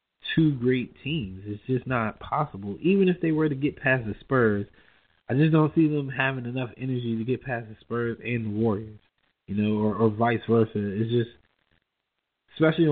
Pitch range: 105-125 Hz